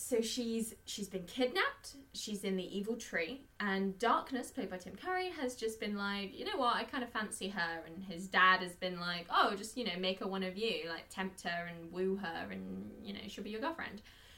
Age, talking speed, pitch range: 20-39, 235 wpm, 195-240 Hz